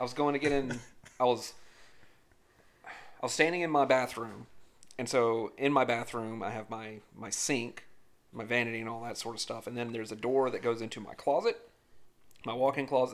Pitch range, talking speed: 120-155 Hz, 205 wpm